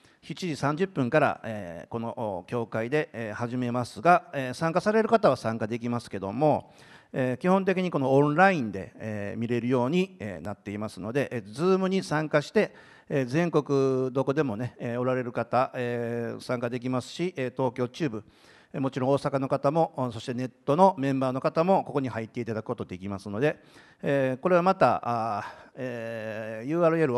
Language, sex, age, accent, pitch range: Japanese, male, 50-69, native, 115-150 Hz